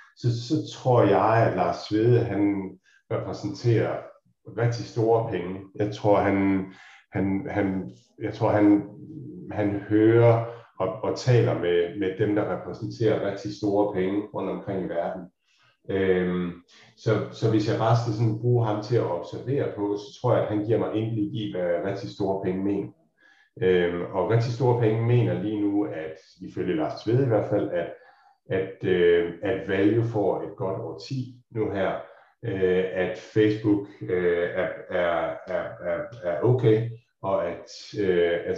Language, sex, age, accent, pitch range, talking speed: Danish, male, 50-69, native, 95-115 Hz, 160 wpm